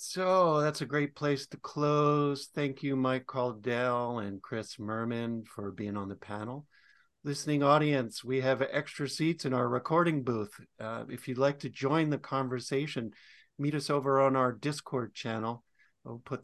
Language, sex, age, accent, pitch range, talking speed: English, male, 50-69, American, 110-140 Hz, 170 wpm